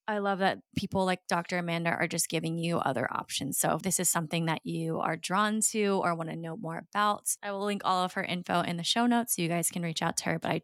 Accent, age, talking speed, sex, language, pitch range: American, 20-39, 280 wpm, female, English, 170-195 Hz